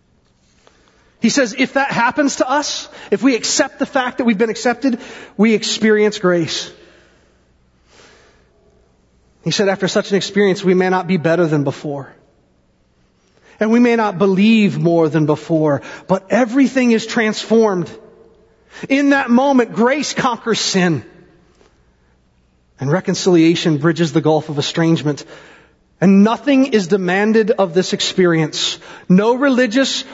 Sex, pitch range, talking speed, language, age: male, 165-225 Hz, 130 wpm, English, 30-49